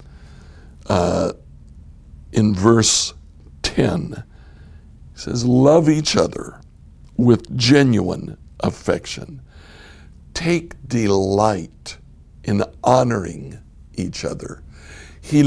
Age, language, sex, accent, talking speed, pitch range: 60-79, English, male, American, 75 wpm, 75-120 Hz